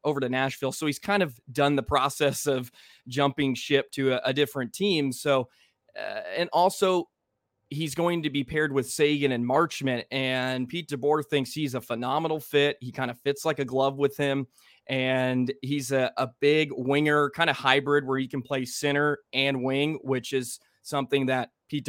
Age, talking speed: 20-39, 190 wpm